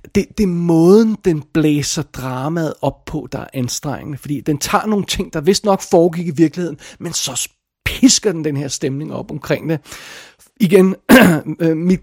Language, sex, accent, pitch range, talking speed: Danish, male, native, 140-170 Hz, 175 wpm